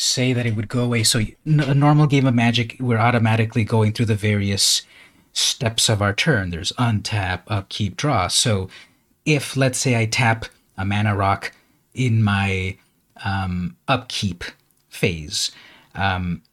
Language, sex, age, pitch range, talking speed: English, male, 30-49, 105-130 Hz, 150 wpm